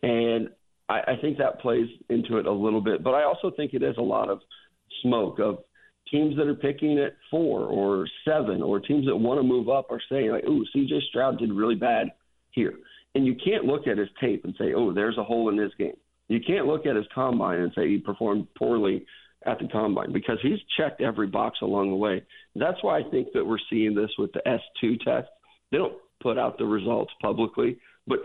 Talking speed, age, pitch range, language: 225 wpm, 50-69, 105-140 Hz, English